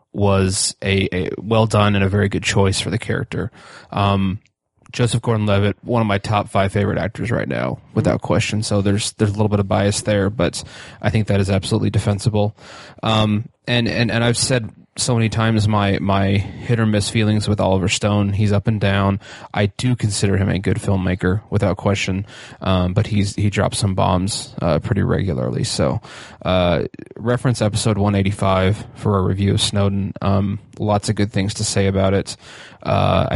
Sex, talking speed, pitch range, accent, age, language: male, 185 wpm, 100-110 Hz, American, 20-39, English